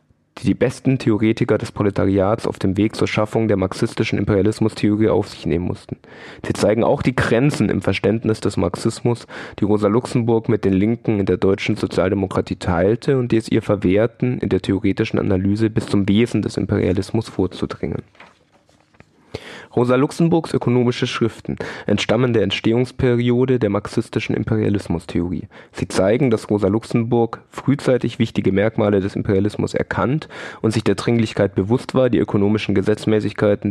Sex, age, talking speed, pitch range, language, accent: male, 20-39, 150 wpm, 100-120 Hz, German, German